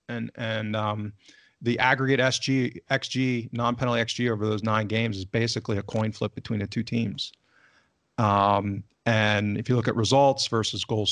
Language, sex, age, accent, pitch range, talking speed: English, male, 40-59, American, 105-120 Hz, 165 wpm